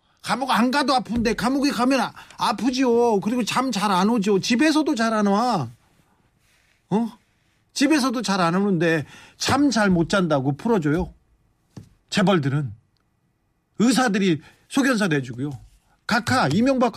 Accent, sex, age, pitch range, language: native, male, 40-59, 140-230 Hz, Korean